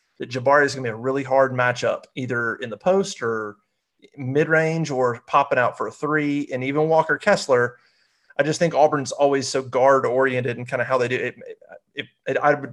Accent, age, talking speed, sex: American, 30-49, 225 wpm, male